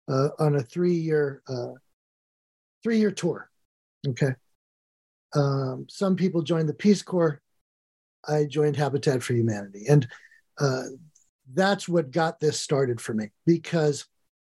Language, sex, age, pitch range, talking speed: English, male, 50-69, 145-185 Hz, 130 wpm